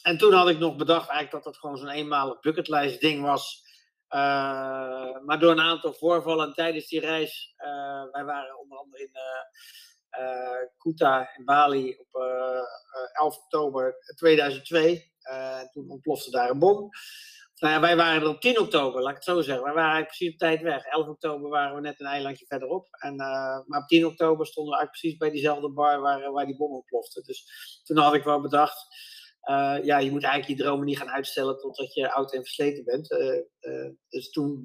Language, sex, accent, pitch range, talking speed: Dutch, male, Dutch, 140-170 Hz, 200 wpm